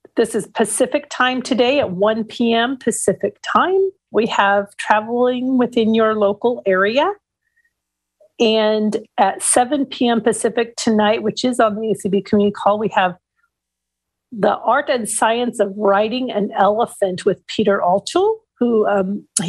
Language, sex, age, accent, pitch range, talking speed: English, female, 40-59, American, 200-255 Hz, 140 wpm